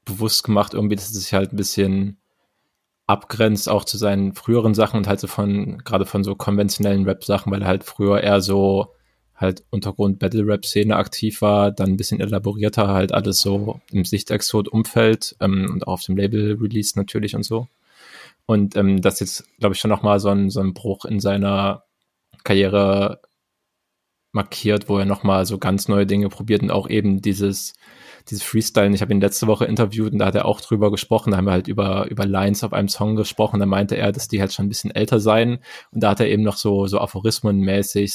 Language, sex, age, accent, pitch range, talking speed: German, male, 20-39, German, 100-105 Hz, 205 wpm